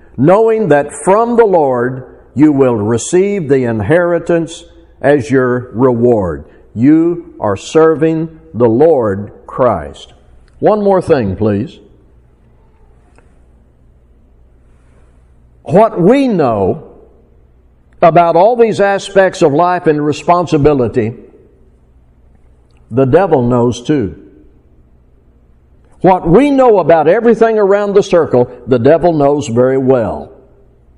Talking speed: 100 wpm